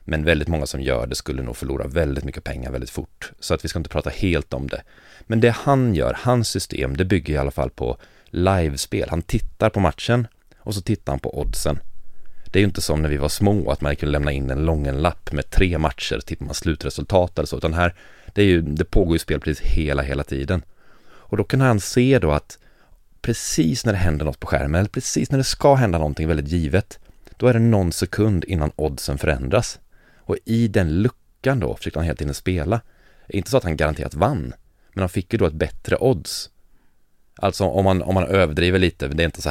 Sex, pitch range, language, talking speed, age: male, 75-95 Hz, Swedish, 230 wpm, 30-49